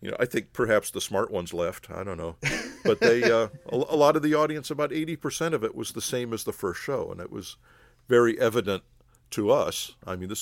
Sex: male